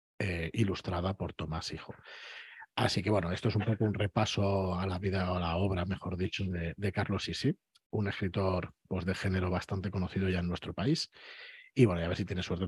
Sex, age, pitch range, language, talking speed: male, 40-59, 90-115 Hz, Spanish, 215 wpm